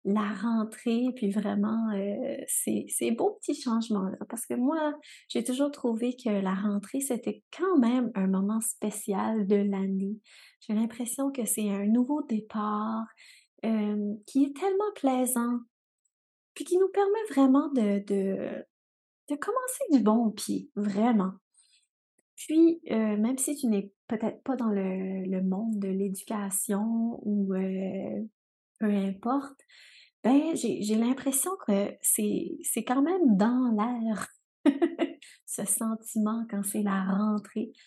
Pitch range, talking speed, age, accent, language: 205-260 Hz, 140 wpm, 30-49, Canadian, French